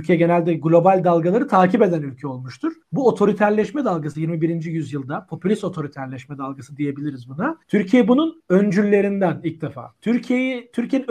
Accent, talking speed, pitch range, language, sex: native, 135 wpm, 160-205 Hz, Turkish, male